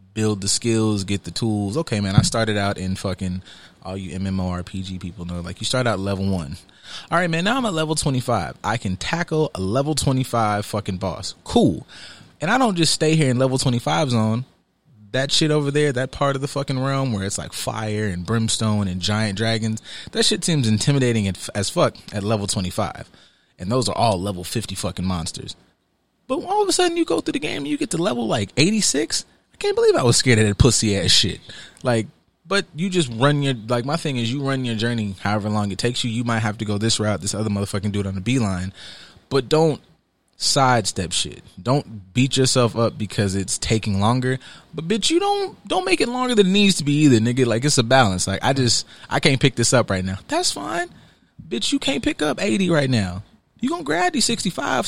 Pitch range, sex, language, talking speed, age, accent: 100-150 Hz, male, English, 220 wpm, 30-49, American